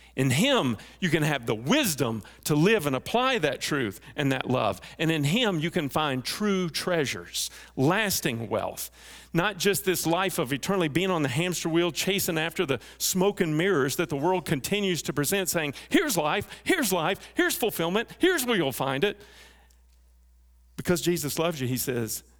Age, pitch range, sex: 50-69, 110-175 Hz, male